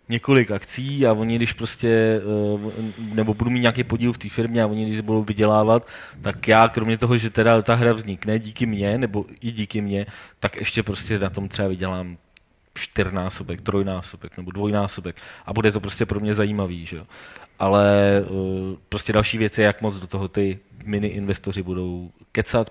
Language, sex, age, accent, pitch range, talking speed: Czech, male, 20-39, native, 100-120 Hz, 180 wpm